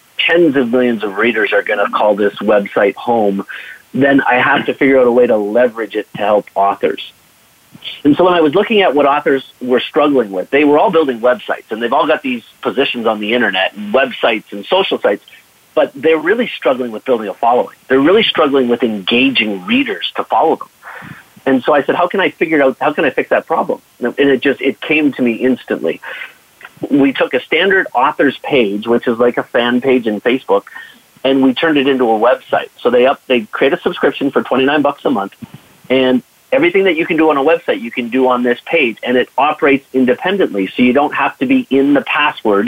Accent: American